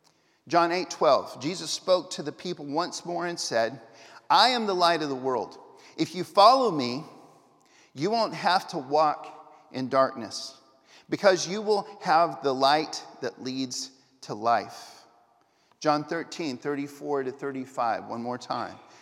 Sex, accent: male, American